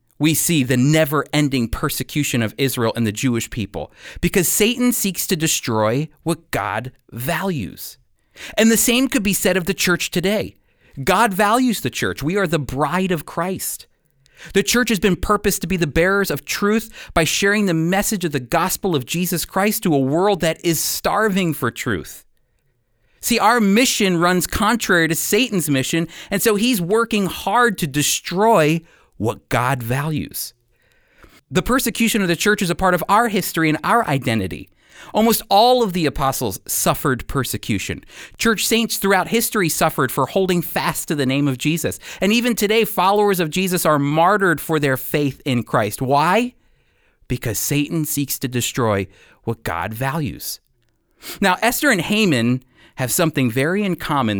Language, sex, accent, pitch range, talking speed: English, male, American, 130-195 Hz, 165 wpm